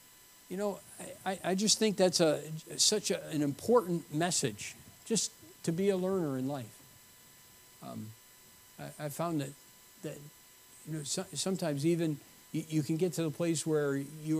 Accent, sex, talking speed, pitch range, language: American, male, 165 wpm, 135-190 Hz, English